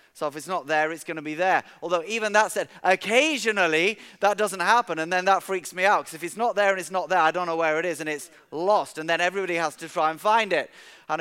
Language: English